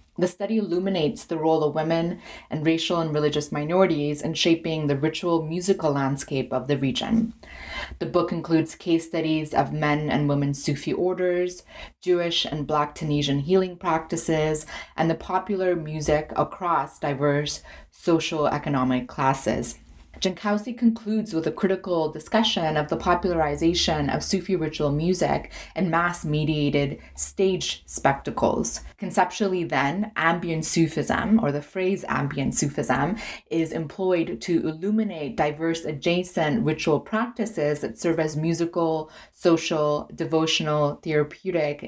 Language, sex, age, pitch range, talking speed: English, female, 20-39, 150-180 Hz, 125 wpm